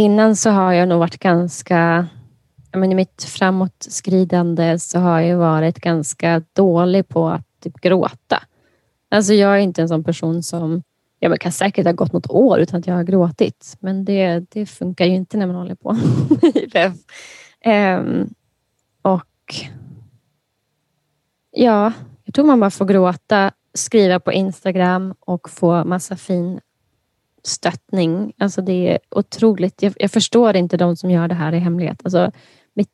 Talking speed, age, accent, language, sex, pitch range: 155 wpm, 20-39, Swedish, English, female, 170-205 Hz